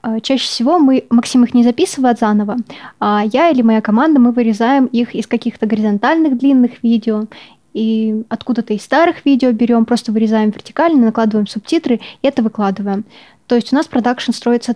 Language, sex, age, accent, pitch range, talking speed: Russian, female, 20-39, native, 225-260 Hz, 165 wpm